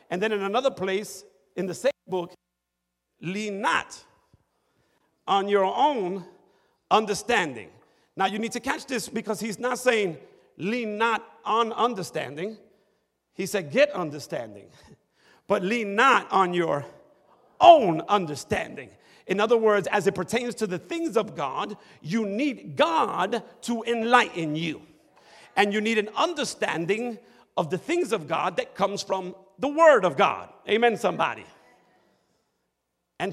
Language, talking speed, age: English, 140 wpm, 50-69